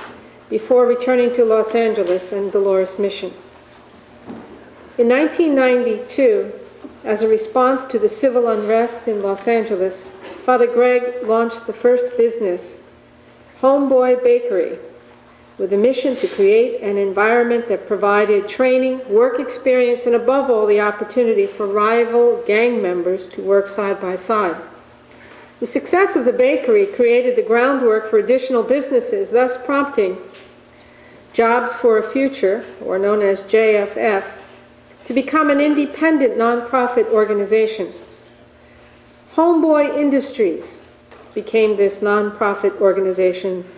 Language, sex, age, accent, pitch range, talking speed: English, female, 50-69, American, 210-265 Hz, 120 wpm